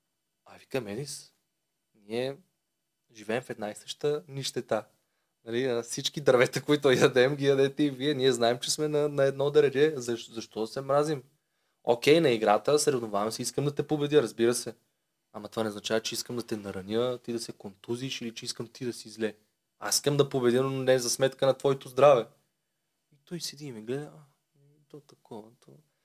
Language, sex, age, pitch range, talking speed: Bulgarian, male, 20-39, 120-155 Hz, 195 wpm